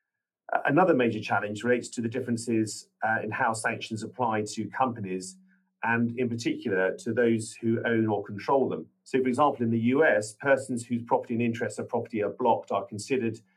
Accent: British